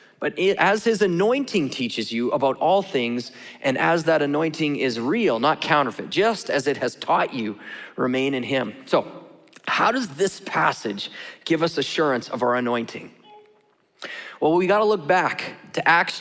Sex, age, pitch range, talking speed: male, 30-49, 155-210 Hz, 165 wpm